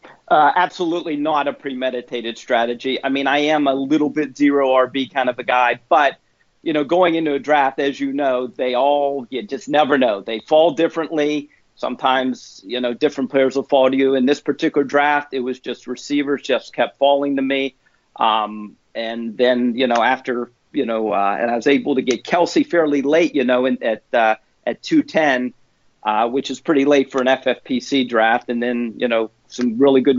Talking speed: 200 wpm